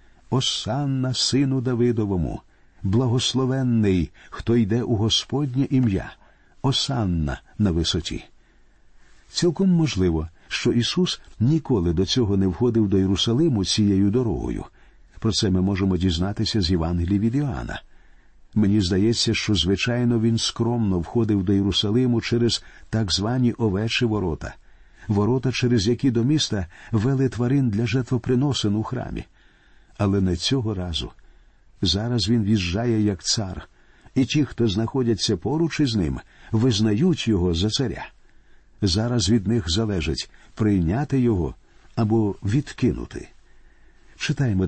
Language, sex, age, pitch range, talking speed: Ukrainian, male, 50-69, 95-125 Hz, 120 wpm